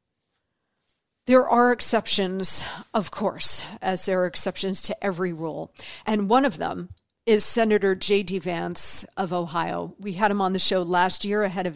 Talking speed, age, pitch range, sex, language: 165 wpm, 50-69, 185-235 Hz, female, English